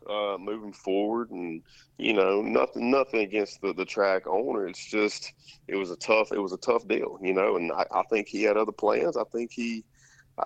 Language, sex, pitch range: English, male, 95-155 Hz